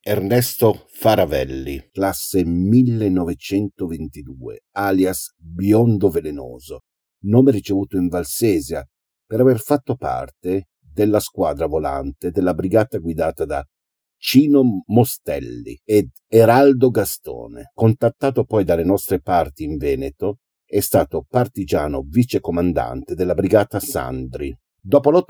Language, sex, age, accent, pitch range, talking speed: Italian, male, 50-69, native, 90-120 Hz, 100 wpm